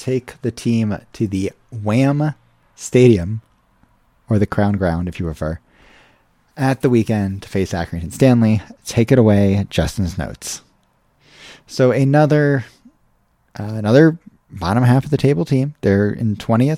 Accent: American